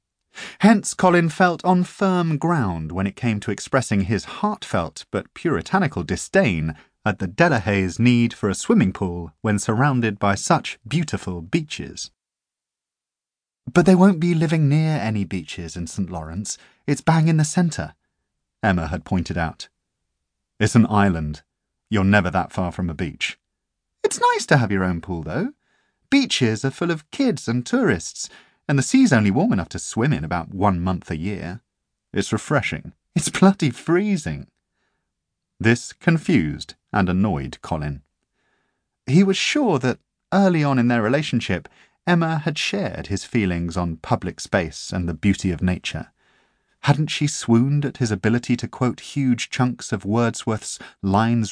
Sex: male